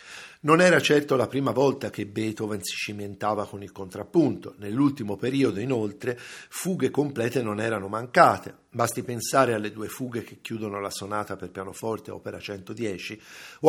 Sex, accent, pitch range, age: male, native, 105-135 Hz, 50-69